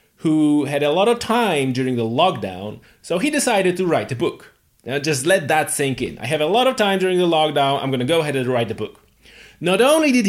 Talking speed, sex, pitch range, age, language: 250 wpm, male, 120-155 Hz, 30-49, English